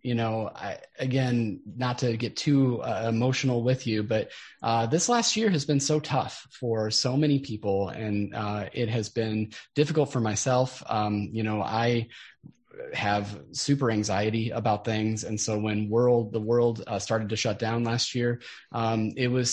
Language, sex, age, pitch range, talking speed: English, male, 20-39, 110-125 Hz, 175 wpm